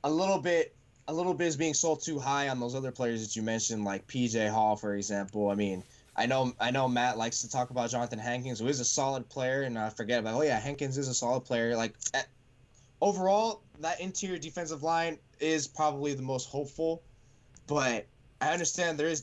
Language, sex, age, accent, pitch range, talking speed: English, male, 10-29, American, 120-150 Hz, 215 wpm